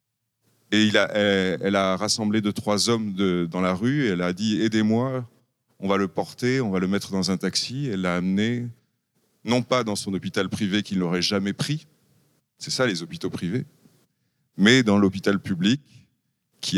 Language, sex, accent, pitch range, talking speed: English, male, French, 95-125 Hz, 185 wpm